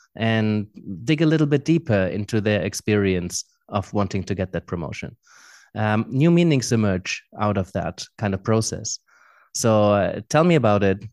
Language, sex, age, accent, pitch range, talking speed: English, male, 30-49, German, 105-130 Hz, 165 wpm